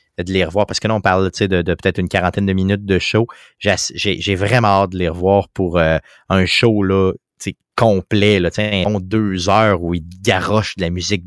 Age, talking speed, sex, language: 30-49, 215 wpm, male, French